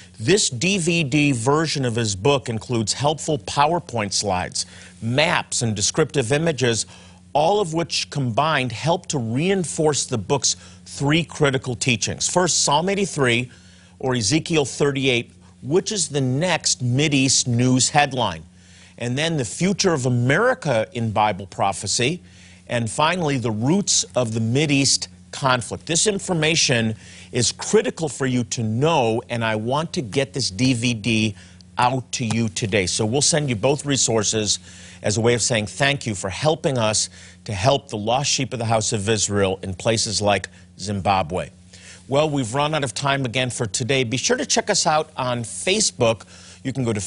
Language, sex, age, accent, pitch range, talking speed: English, male, 50-69, American, 105-145 Hz, 160 wpm